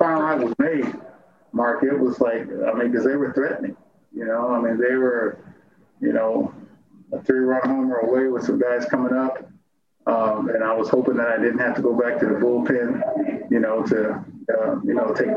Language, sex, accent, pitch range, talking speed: English, male, American, 115-130 Hz, 205 wpm